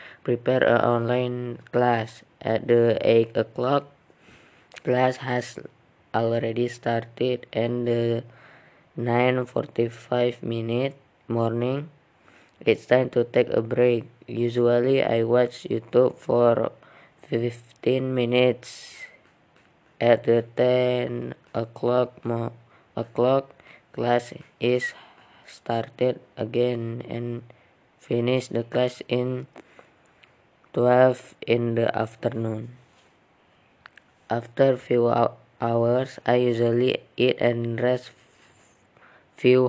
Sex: female